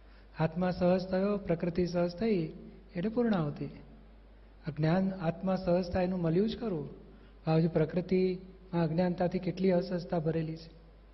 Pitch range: 160-190 Hz